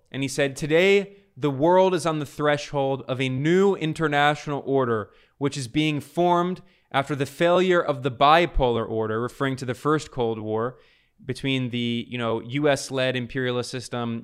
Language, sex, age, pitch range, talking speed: English, male, 20-39, 120-145 Hz, 155 wpm